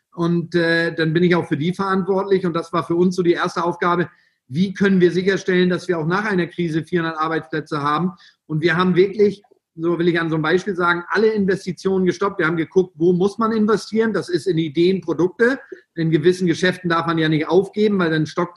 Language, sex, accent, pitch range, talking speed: German, male, German, 170-195 Hz, 225 wpm